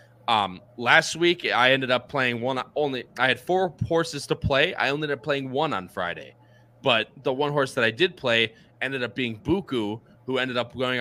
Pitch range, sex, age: 110-135 Hz, male, 20-39